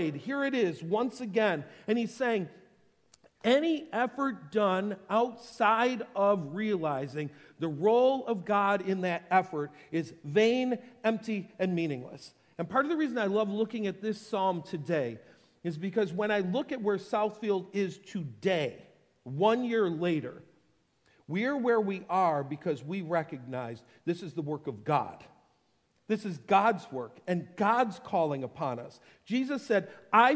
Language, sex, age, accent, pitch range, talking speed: English, male, 50-69, American, 180-230 Hz, 150 wpm